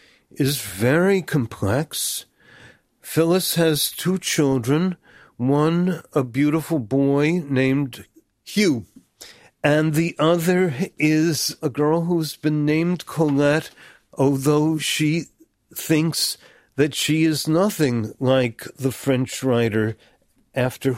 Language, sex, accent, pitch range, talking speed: English, male, American, 130-160 Hz, 100 wpm